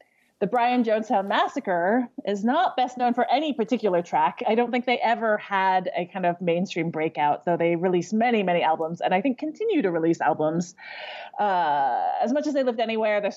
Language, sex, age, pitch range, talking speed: English, female, 30-49, 175-240 Hz, 195 wpm